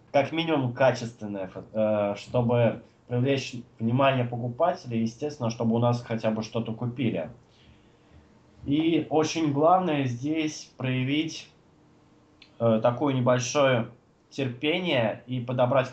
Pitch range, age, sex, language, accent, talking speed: 115-140 Hz, 20-39, male, Russian, native, 95 wpm